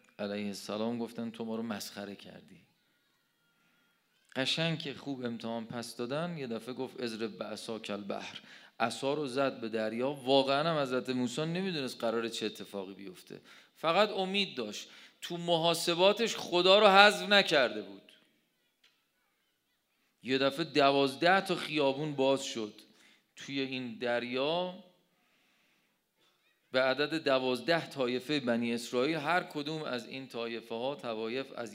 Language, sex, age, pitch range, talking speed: Persian, male, 40-59, 120-170 Hz, 125 wpm